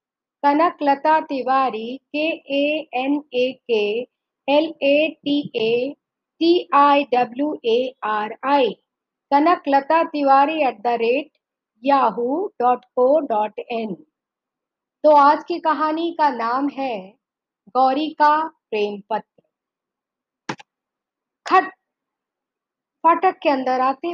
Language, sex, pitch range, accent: Hindi, female, 245-320 Hz, native